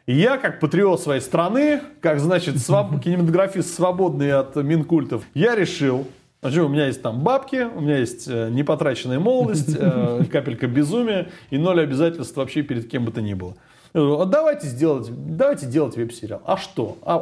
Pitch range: 120-160 Hz